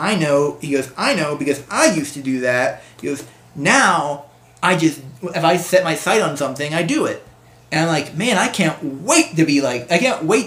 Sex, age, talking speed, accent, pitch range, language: male, 20-39, 230 wpm, American, 130-155 Hz, English